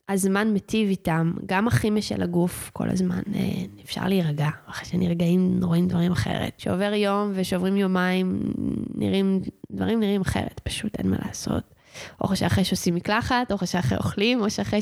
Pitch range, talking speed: 185-230 Hz, 155 wpm